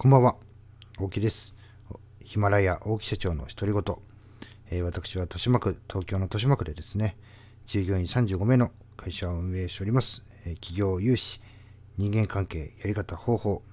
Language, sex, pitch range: Japanese, male, 95-110 Hz